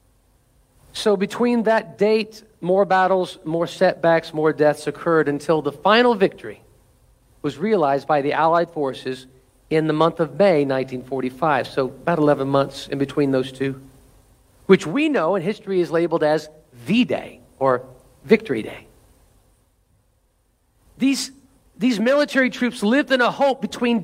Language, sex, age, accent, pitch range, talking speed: English, male, 50-69, American, 170-250 Hz, 140 wpm